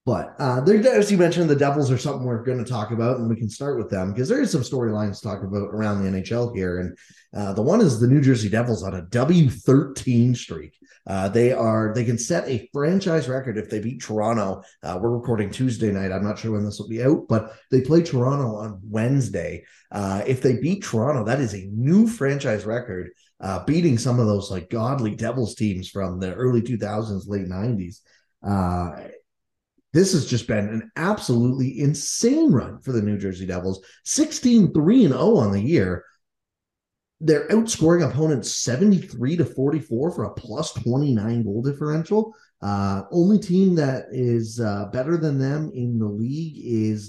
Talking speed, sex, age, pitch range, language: 185 wpm, male, 20-39, 105-145 Hz, English